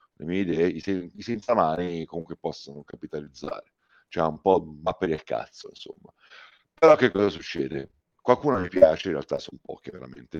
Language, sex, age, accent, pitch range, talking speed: Italian, male, 50-69, native, 85-100 Hz, 180 wpm